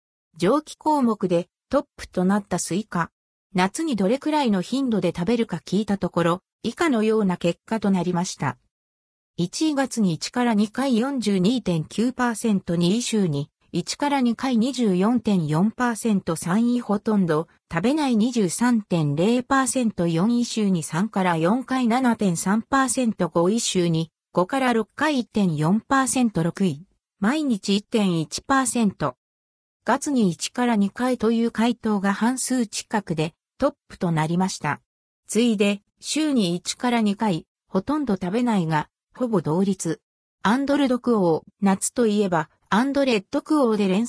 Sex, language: female, Japanese